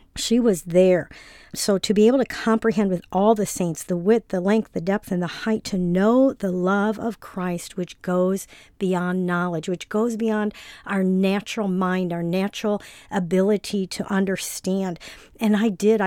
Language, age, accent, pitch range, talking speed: English, 50-69, American, 180-215 Hz, 170 wpm